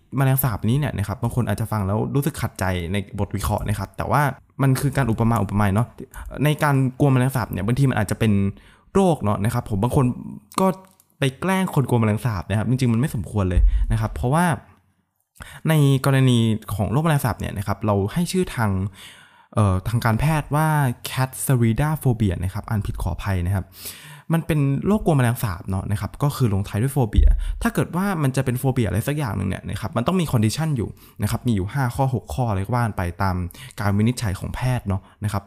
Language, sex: Thai, male